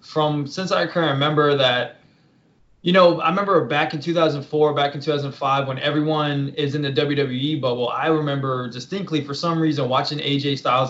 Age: 20-39